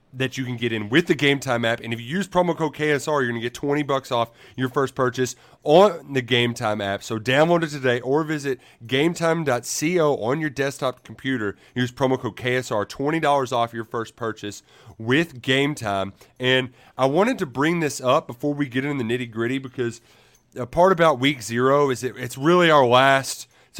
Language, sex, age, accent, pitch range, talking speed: English, male, 30-49, American, 120-150 Hz, 205 wpm